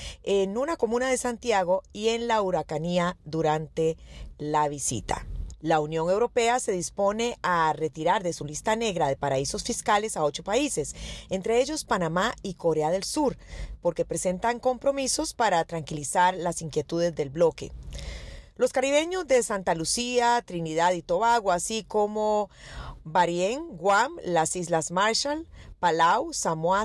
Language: Spanish